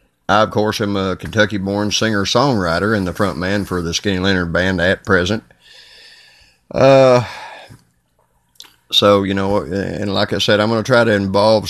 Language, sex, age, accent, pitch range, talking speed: English, male, 30-49, American, 95-105 Hz, 175 wpm